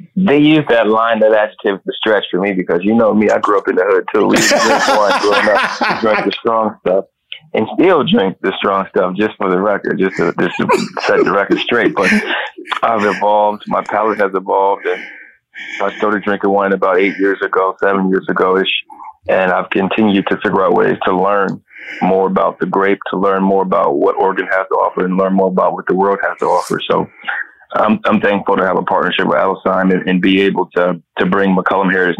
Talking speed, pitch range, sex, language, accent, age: 220 wpm, 95-105 Hz, male, English, American, 20-39